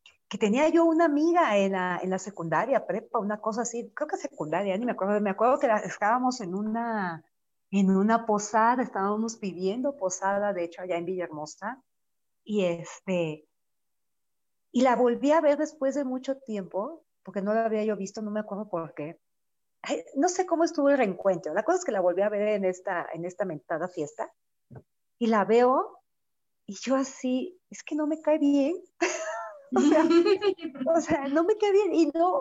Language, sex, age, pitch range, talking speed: Spanish, female, 40-59, 200-315 Hz, 190 wpm